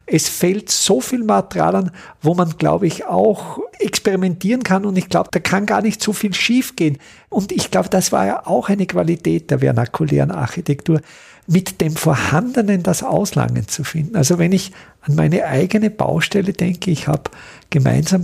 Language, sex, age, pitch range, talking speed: German, male, 50-69, 155-200 Hz, 180 wpm